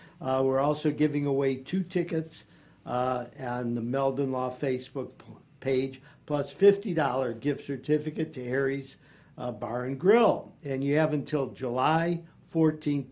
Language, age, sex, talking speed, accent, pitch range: English, 50-69, male, 135 wpm, American, 135-165 Hz